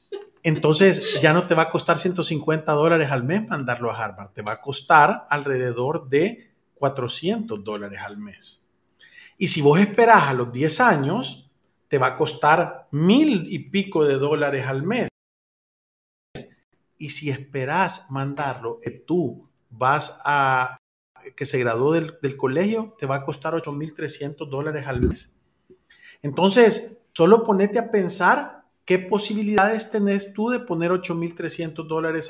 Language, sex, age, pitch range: Spanish, male, 40-59, 140-195 Hz